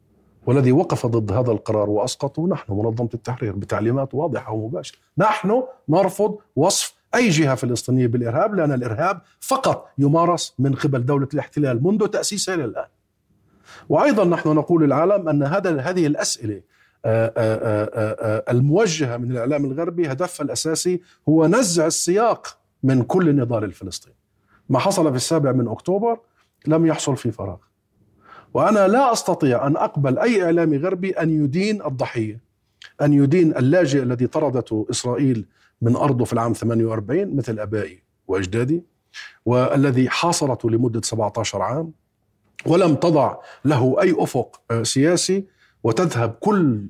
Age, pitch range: 50-69, 115-160 Hz